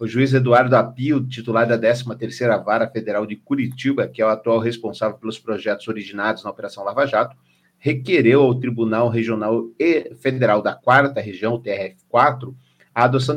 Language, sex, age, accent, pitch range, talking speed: Portuguese, male, 40-59, Brazilian, 115-140 Hz, 155 wpm